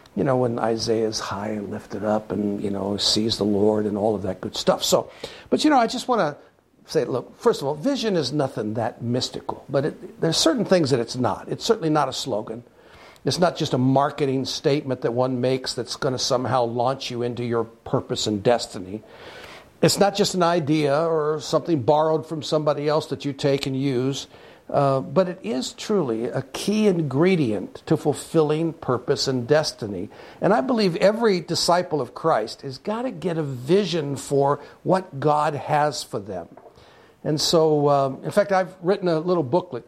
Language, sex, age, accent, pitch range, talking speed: English, male, 60-79, American, 125-165 Hz, 195 wpm